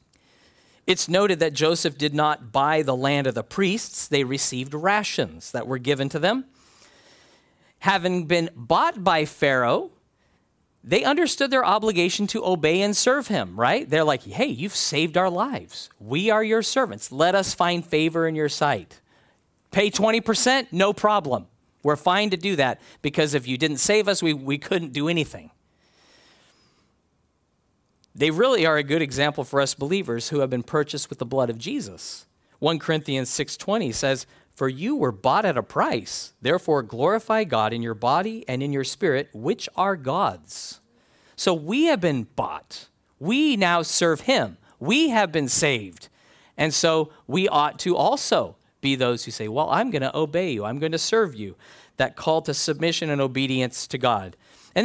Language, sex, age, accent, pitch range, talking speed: English, male, 40-59, American, 135-195 Hz, 175 wpm